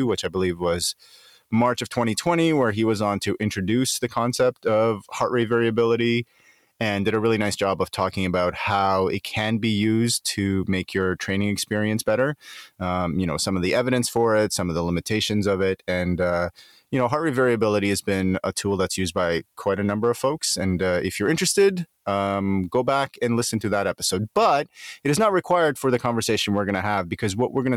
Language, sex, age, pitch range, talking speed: English, male, 30-49, 95-125 Hz, 220 wpm